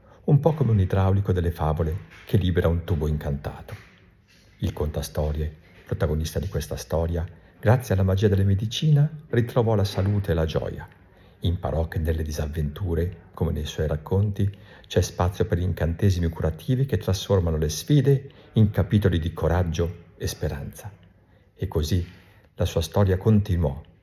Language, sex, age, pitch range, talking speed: Italian, male, 50-69, 85-105 Hz, 145 wpm